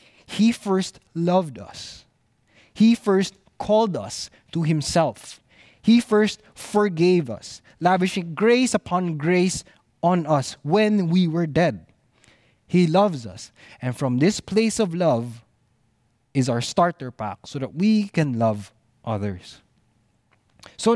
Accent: Filipino